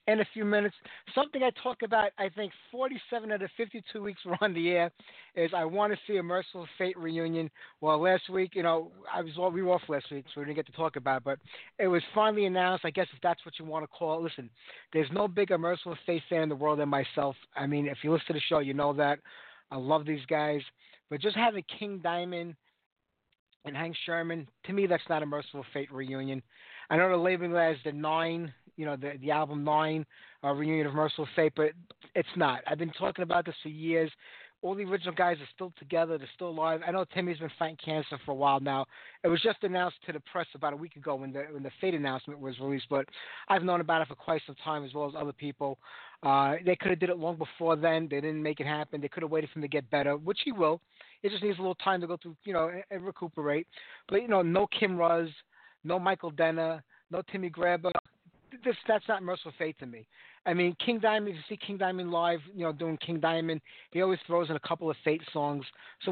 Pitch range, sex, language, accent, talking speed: 150-185 Hz, male, English, American, 245 wpm